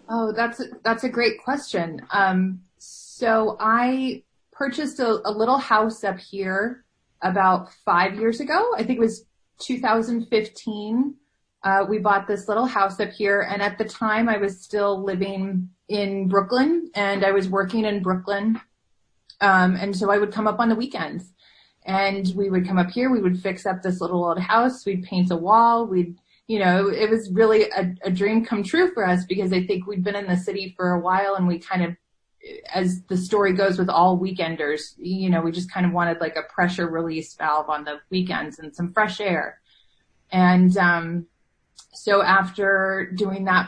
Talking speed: 190 wpm